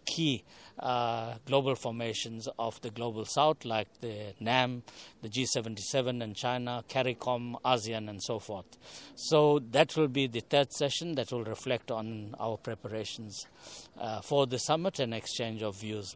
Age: 60-79